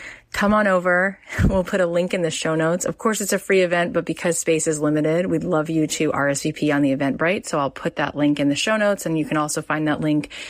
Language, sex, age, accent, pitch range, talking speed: English, female, 30-49, American, 150-175 Hz, 265 wpm